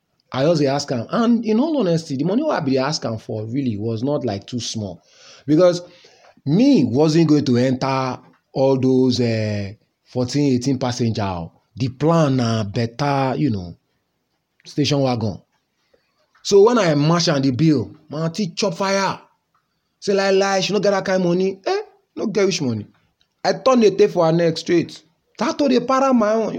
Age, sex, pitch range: 30-49, male, 125-195 Hz